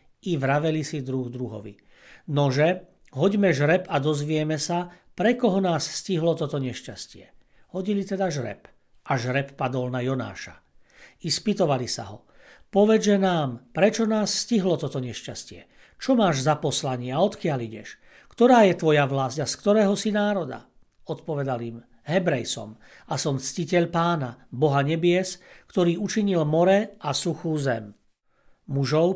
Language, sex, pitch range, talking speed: Slovak, male, 130-175 Hz, 140 wpm